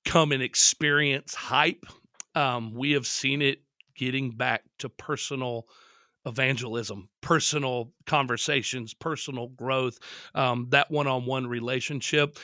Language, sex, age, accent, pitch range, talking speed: English, male, 40-59, American, 125-155 Hz, 105 wpm